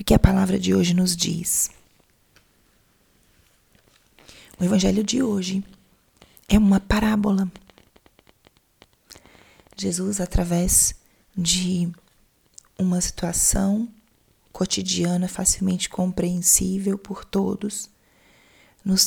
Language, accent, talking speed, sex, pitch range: Portuguese, Brazilian, 80 wpm, female, 180-210 Hz